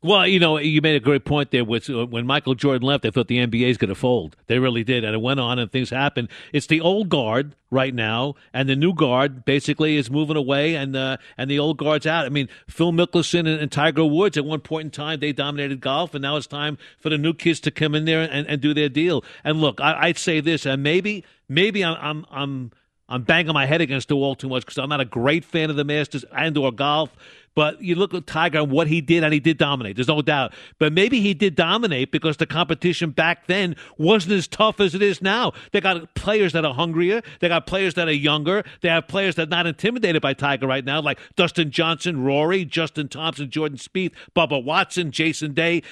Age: 50-69